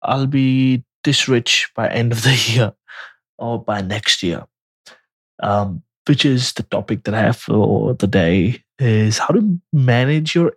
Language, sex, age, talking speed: English, male, 20-39, 165 wpm